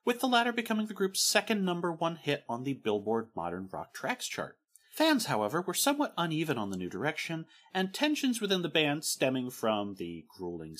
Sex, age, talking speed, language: male, 30-49, 195 wpm, English